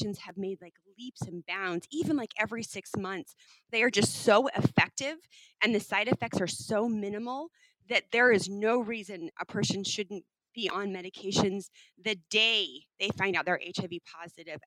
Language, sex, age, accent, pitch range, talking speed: English, female, 30-49, American, 185-215 Hz, 170 wpm